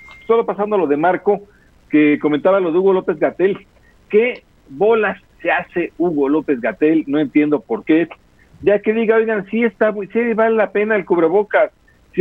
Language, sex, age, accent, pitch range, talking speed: Spanish, male, 50-69, Mexican, 155-215 Hz, 180 wpm